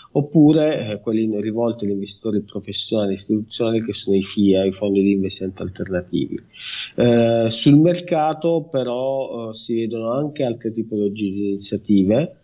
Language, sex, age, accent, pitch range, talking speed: Italian, male, 30-49, native, 100-120 Hz, 145 wpm